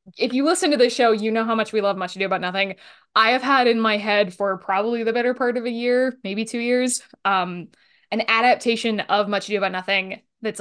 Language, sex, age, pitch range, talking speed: English, female, 10-29, 190-225 Hz, 250 wpm